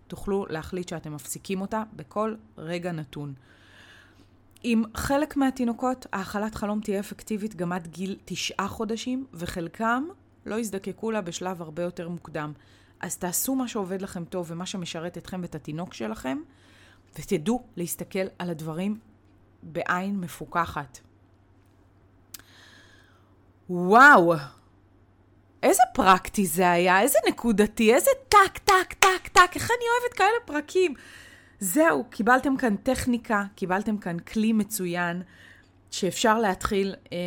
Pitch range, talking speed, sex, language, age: 165-215 Hz, 115 wpm, female, Hebrew, 20-39